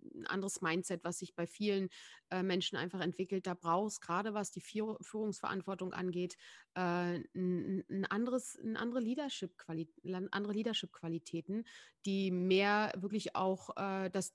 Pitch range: 180-215 Hz